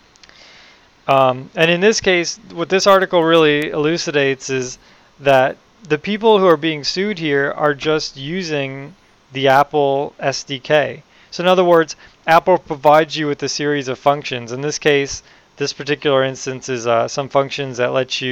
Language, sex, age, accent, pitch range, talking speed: English, male, 30-49, American, 125-150 Hz, 165 wpm